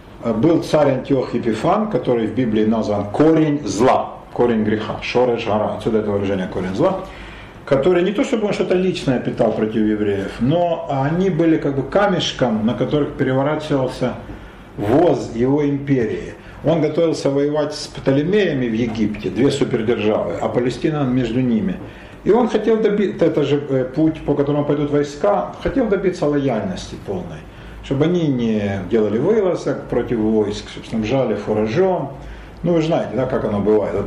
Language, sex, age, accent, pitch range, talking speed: Russian, male, 50-69, native, 110-165 Hz, 155 wpm